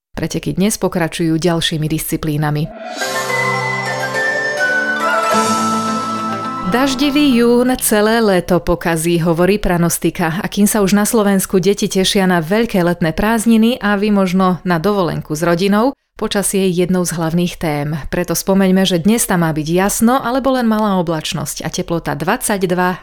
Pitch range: 170-215 Hz